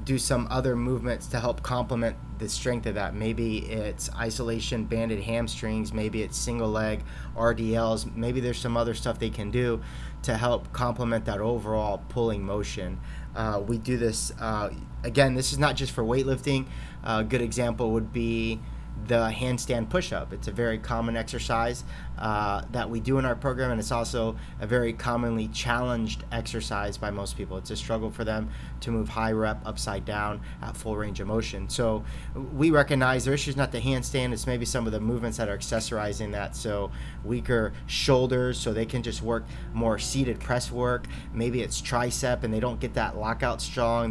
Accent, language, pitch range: American, English, 110-120 Hz